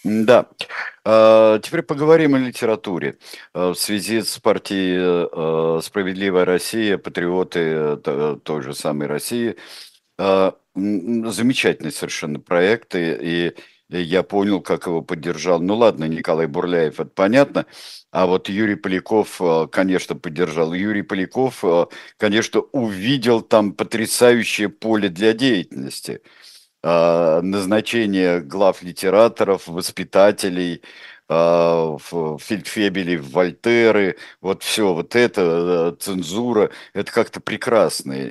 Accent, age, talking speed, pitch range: native, 50-69, 95 wpm, 85-105 Hz